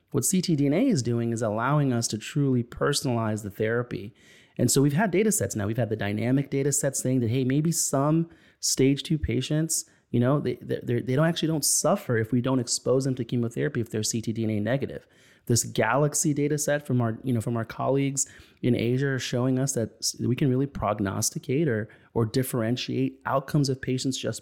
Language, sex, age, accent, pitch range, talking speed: English, male, 30-49, American, 115-140 Hz, 200 wpm